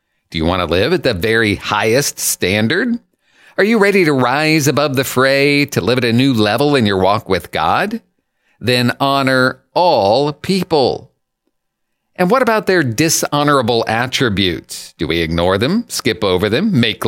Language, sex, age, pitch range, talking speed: English, male, 50-69, 110-160 Hz, 165 wpm